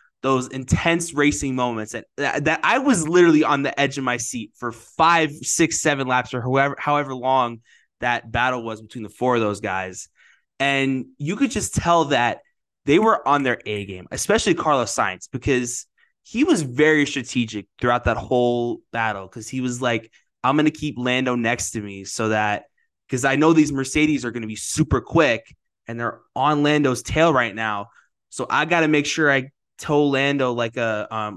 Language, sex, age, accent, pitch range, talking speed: English, male, 20-39, American, 110-140 Hz, 195 wpm